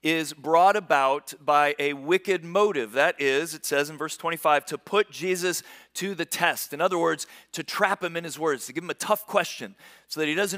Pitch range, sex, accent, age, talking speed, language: 115-170 Hz, male, American, 40-59, 220 wpm, English